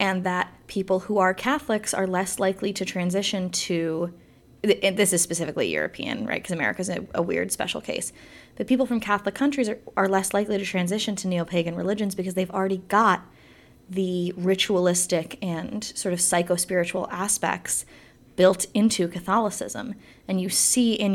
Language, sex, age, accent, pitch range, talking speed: English, female, 20-39, American, 175-220 Hz, 160 wpm